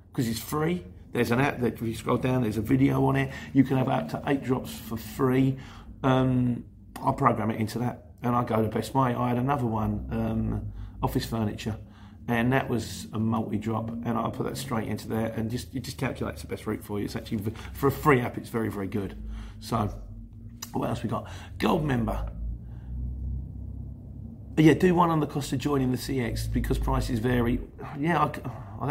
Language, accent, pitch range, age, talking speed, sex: English, British, 105-125 Hz, 40-59, 210 wpm, male